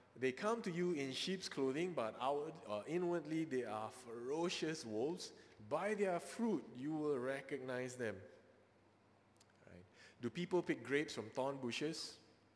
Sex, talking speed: male, 135 wpm